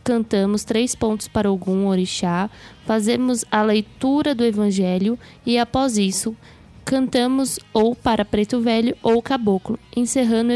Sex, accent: female, Brazilian